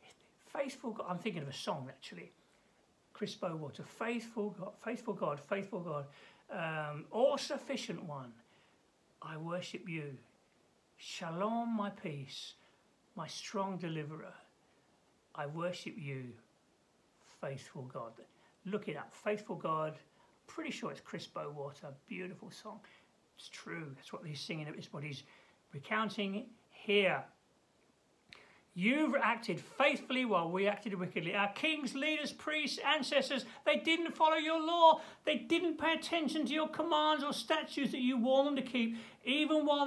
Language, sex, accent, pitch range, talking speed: English, male, British, 185-275 Hz, 135 wpm